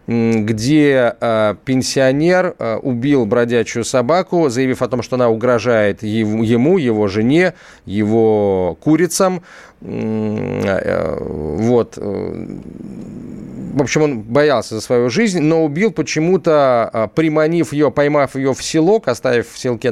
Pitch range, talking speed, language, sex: 105-140 Hz, 110 wpm, Russian, male